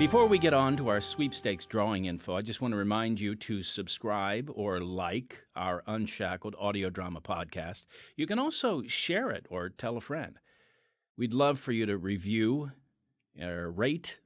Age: 50-69